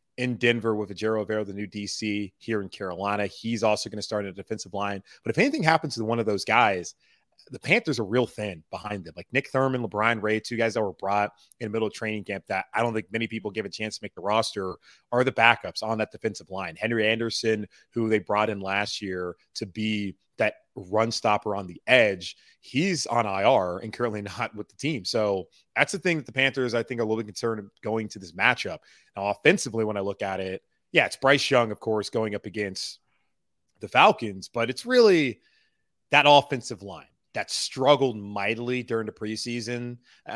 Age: 30-49